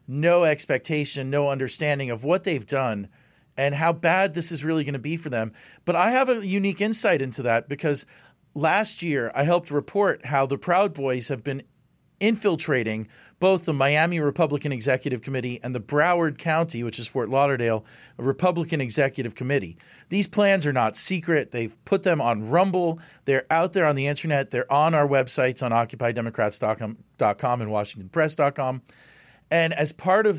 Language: English